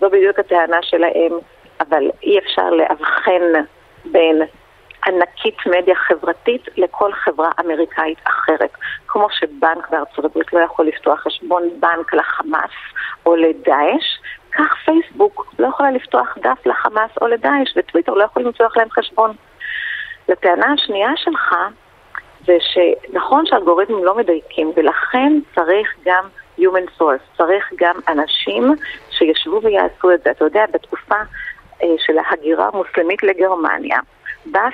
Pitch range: 170-250 Hz